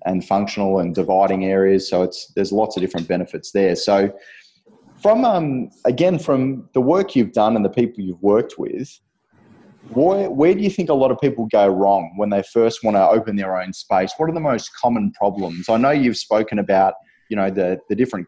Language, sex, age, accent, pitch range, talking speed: English, male, 20-39, Australian, 95-110 Hz, 205 wpm